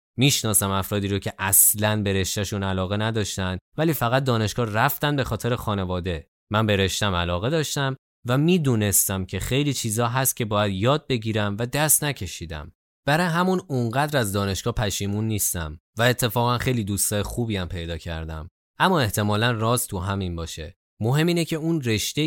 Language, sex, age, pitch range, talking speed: Persian, male, 20-39, 100-140 Hz, 155 wpm